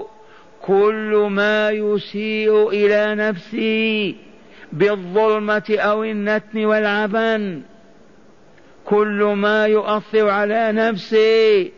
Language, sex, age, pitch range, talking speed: Arabic, male, 50-69, 185-215 Hz, 70 wpm